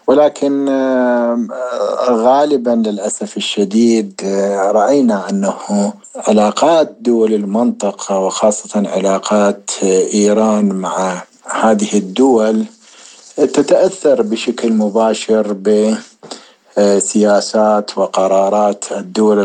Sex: male